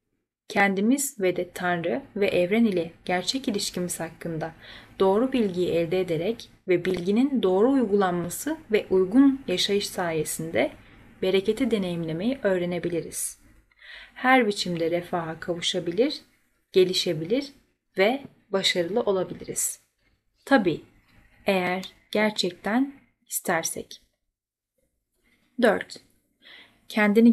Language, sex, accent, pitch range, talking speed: Turkish, female, native, 175-235 Hz, 85 wpm